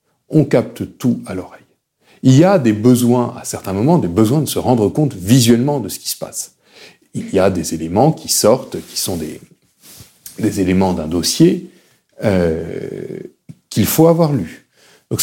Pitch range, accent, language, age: 95-145 Hz, French, French, 40-59